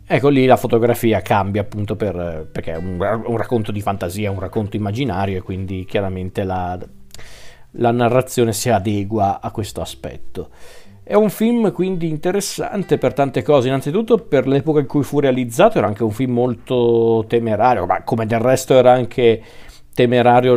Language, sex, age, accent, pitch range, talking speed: Italian, male, 40-59, native, 110-125 Hz, 165 wpm